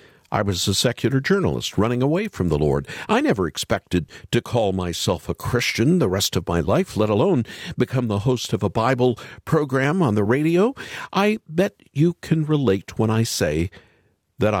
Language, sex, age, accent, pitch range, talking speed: English, male, 50-69, American, 95-145 Hz, 180 wpm